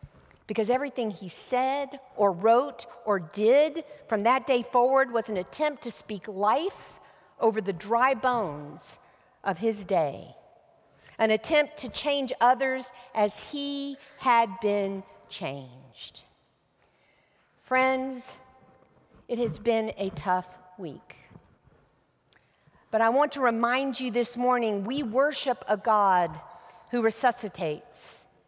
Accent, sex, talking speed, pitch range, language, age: American, female, 120 wpm, 205-265 Hz, English, 50-69